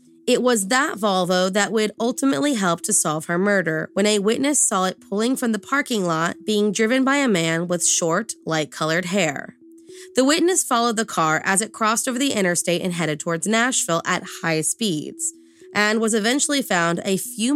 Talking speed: 190 wpm